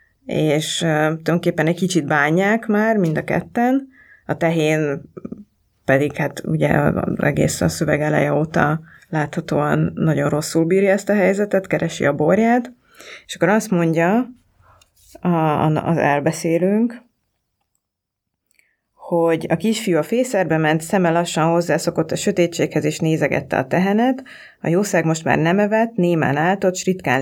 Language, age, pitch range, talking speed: Hungarian, 30-49, 155-190 Hz, 130 wpm